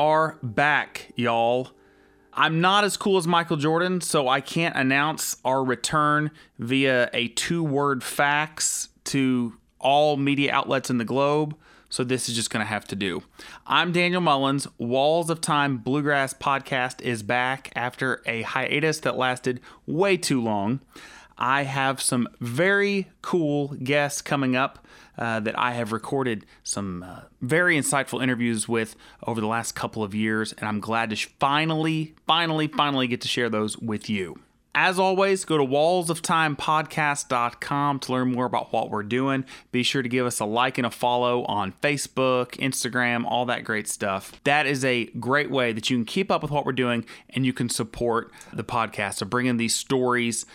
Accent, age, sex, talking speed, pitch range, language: American, 30-49, male, 175 wpm, 120-150 Hz, English